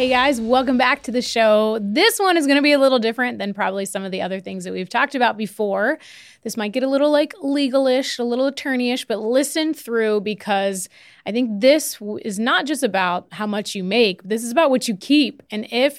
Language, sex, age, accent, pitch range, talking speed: English, female, 30-49, American, 205-270 Hz, 230 wpm